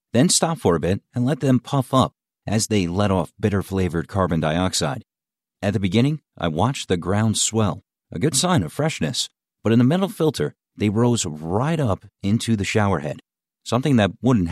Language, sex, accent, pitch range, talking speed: English, male, American, 90-120 Hz, 185 wpm